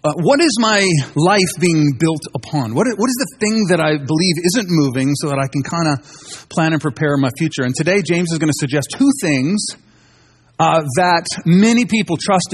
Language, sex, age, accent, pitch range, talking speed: English, male, 40-59, American, 140-205 Hz, 205 wpm